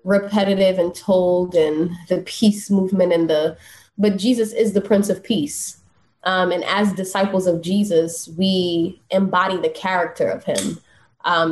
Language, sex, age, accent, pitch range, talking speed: English, female, 20-39, American, 170-210 Hz, 150 wpm